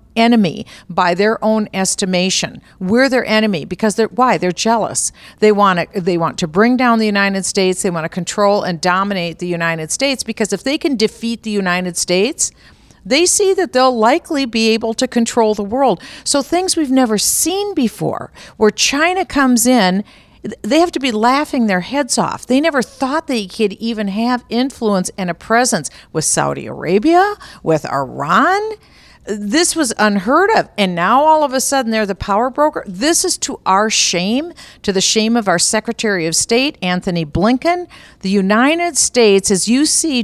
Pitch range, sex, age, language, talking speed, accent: 195-260 Hz, female, 50-69, English, 180 wpm, American